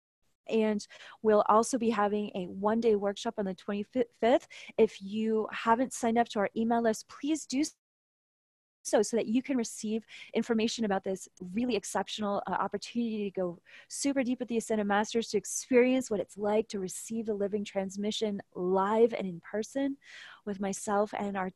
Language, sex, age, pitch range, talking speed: English, female, 30-49, 200-230 Hz, 170 wpm